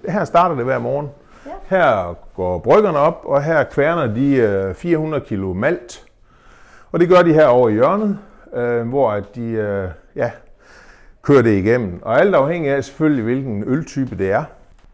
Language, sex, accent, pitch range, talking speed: Danish, male, native, 95-130 Hz, 155 wpm